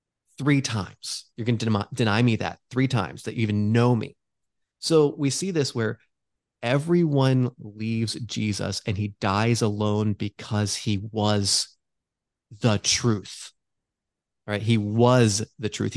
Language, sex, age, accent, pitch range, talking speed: English, male, 30-49, American, 105-130 Hz, 140 wpm